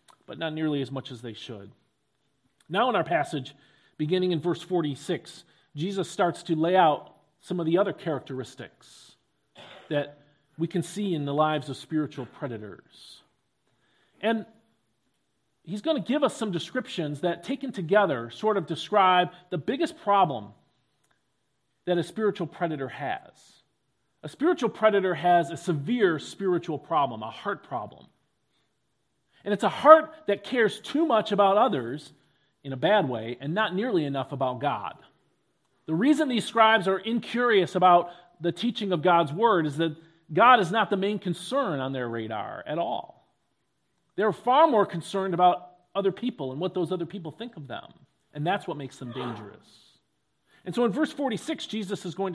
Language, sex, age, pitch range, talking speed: English, male, 40-59, 145-210 Hz, 165 wpm